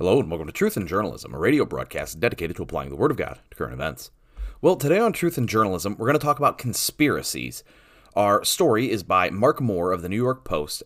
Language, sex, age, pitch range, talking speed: English, male, 30-49, 95-130 Hz, 240 wpm